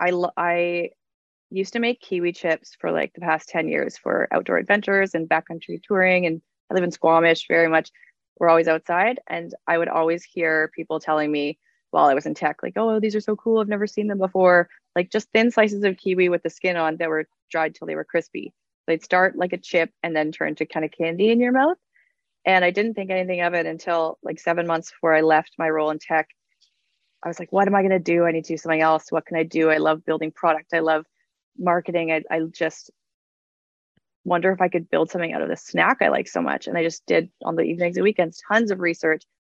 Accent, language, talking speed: American, English, 240 wpm